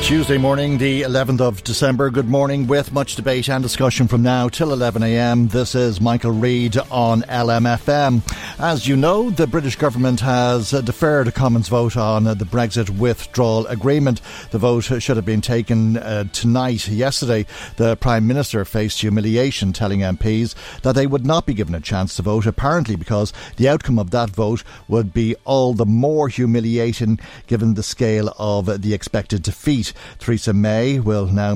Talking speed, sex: 170 wpm, male